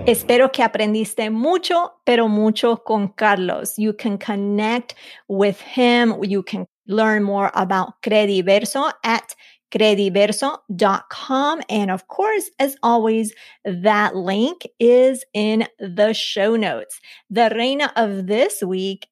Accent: American